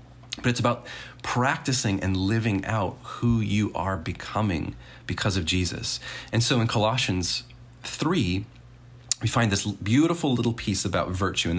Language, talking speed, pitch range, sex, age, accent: English, 145 wpm, 95-120 Hz, male, 30-49, American